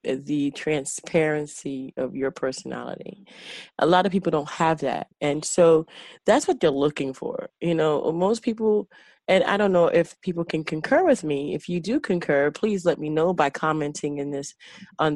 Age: 30-49